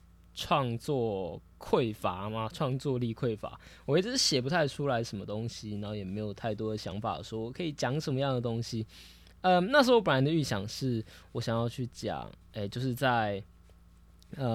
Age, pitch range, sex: 20-39, 105-140 Hz, male